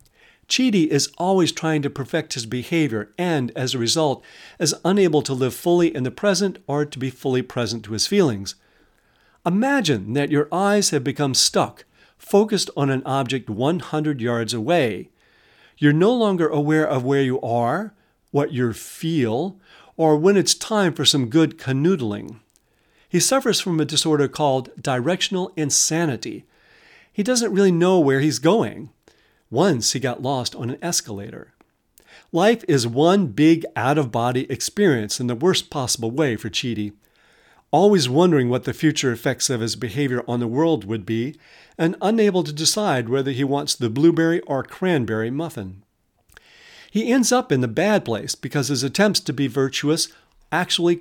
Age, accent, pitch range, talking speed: 50-69, American, 125-175 Hz, 160 wpm